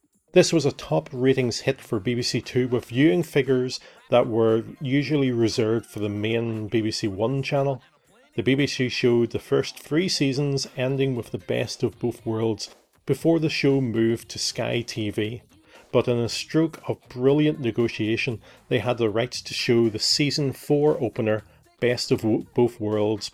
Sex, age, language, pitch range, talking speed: male, 30-49, English, 115-145 Hz, 165 wpm